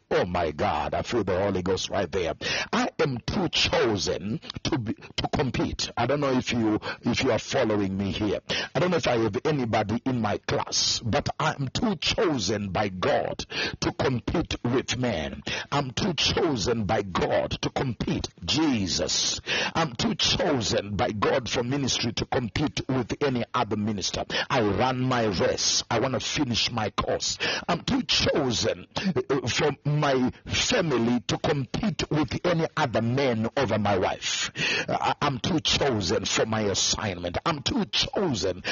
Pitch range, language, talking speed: 105-140 Hz, English, 165 wpm